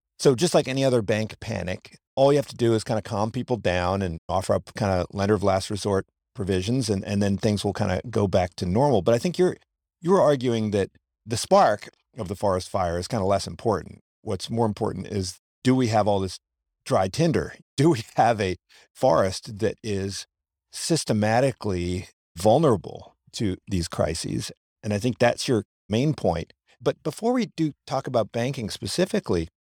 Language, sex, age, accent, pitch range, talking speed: English, male, 50-69, American, 95-120 Hz, 190 wpm